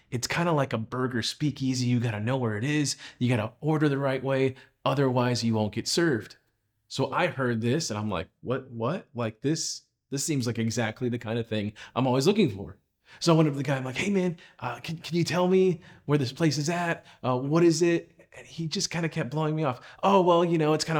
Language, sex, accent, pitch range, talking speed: English, male, American, 120-165 Hz, 255 wpm